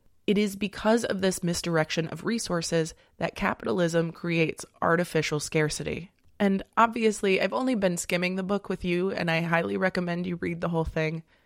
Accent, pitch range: American, 165-195 Hz